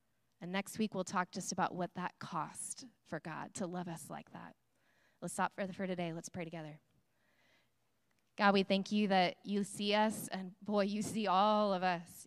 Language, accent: English, American